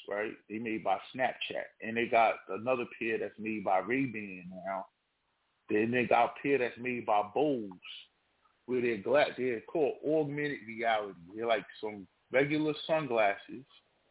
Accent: American